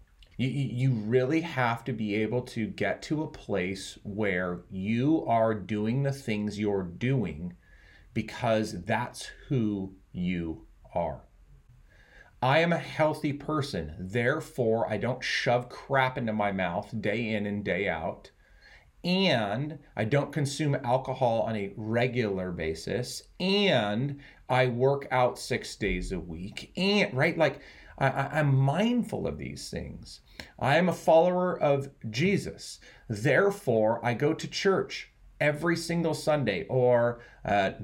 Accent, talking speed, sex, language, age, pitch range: American, 130 wpm, male, English, 30-49, 110-150 Hz